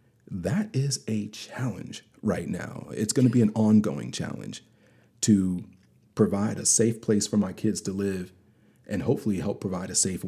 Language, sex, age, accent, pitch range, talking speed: English, male, 40-59, American, 95-110 Hz, 170 wpm